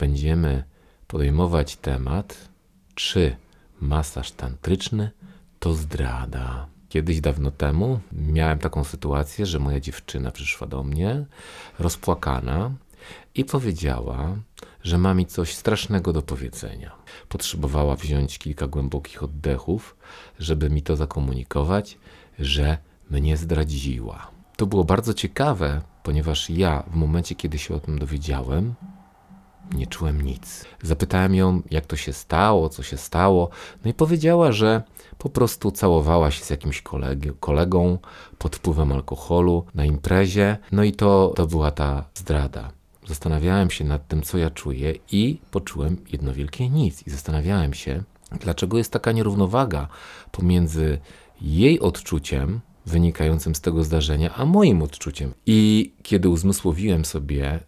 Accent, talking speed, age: native, 130 wpm, 40-59